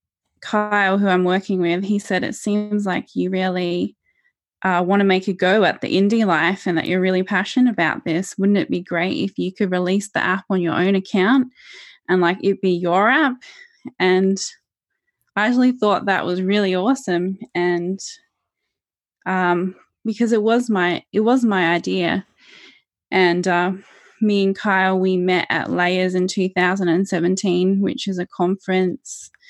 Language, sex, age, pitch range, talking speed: English, female, 20-39, 180-210 Hz, 165 wpm